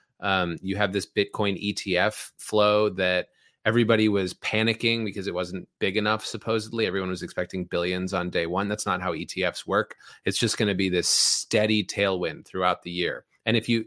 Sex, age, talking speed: male, 30-49, 185 wpm